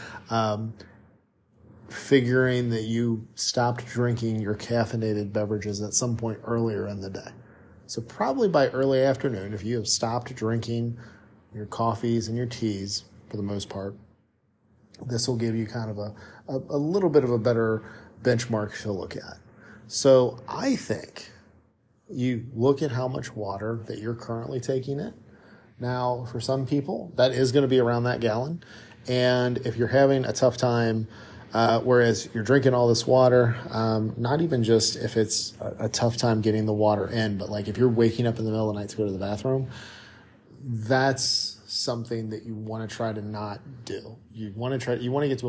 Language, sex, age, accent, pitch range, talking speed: English, male, 40-59, American, 110-125 Hz, 180 wpm